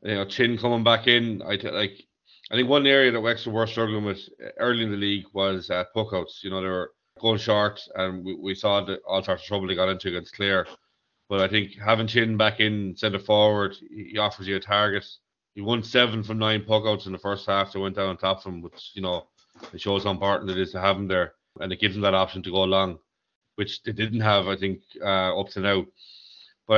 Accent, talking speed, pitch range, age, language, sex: Irish, 245 wpm, 95-110 Hz, 30-49, English, male